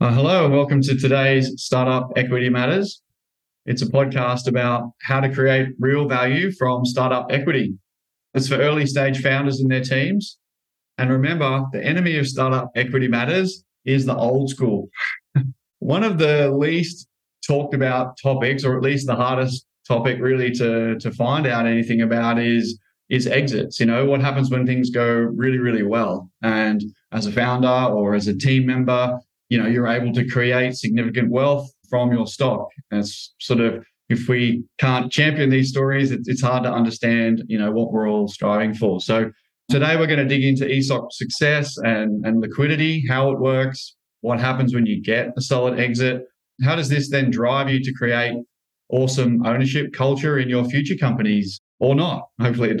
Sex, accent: male, Australian